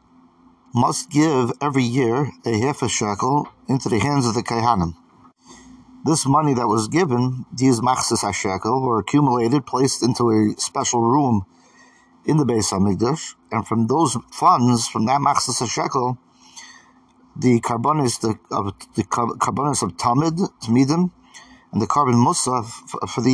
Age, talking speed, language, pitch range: 50-69, 145 wpm, English, 110-135 Hz